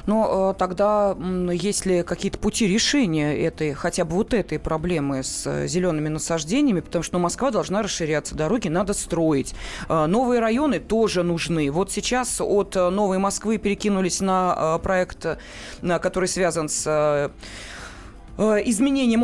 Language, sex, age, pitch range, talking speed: Russian, female, 20-39, 170-225 Hz, 150 wpm